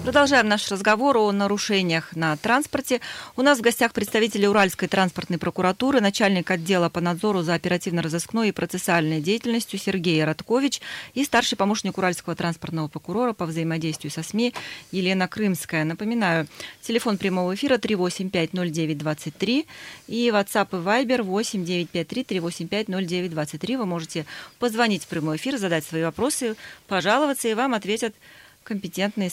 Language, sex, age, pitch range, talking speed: Russian, female, 30-49, 175-230 Hz, 125 wpm